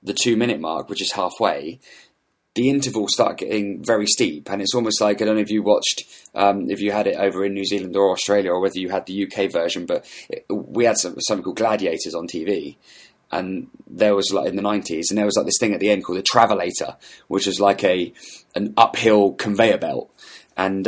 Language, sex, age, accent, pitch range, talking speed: English, male, 20-39, British, 100-115 Hz, 225 wpm